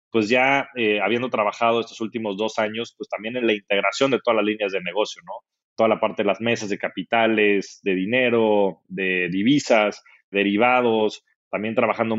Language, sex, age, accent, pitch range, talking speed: Spanish, male, 30-49, Mexican, 105-125 Hz, 175 wpm